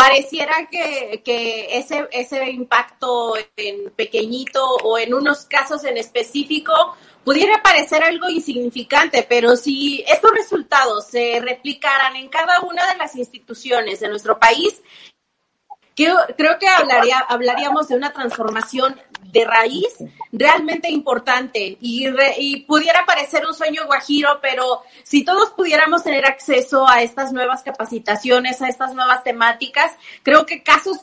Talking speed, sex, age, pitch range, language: 135 wpm, female, 30-49, 245-300 Hz, Spanish